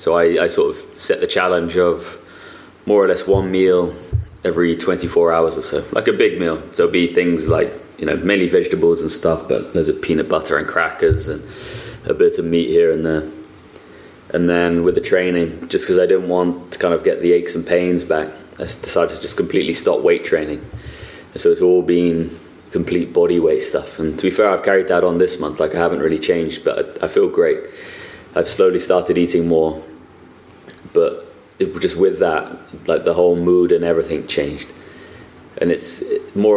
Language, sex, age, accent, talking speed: English, male, 20-39, British, 205 wpm